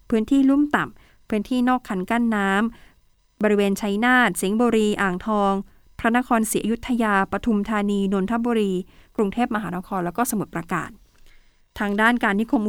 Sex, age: female, 20-39